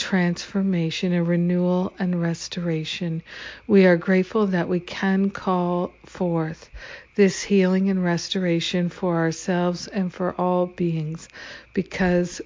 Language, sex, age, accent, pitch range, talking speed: English, female, 60-79, American, 165-190 Hz, 115 wpm